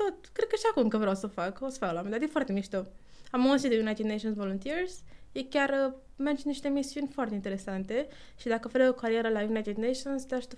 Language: Romanian